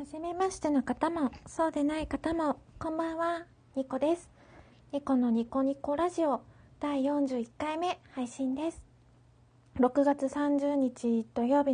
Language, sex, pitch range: Japanese, female, 235-315 Hz